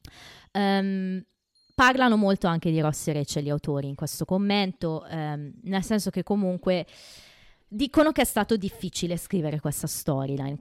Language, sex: Italian, female